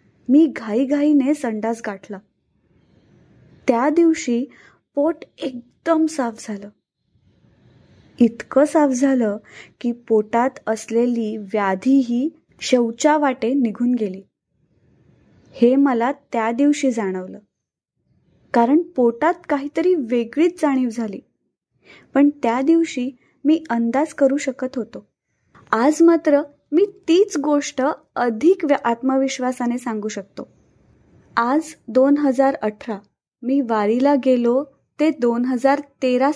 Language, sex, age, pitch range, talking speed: Marathi, female, 20-39, 230-290 Hz, 100 wpm